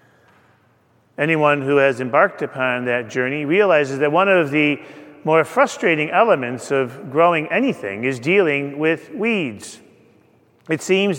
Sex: male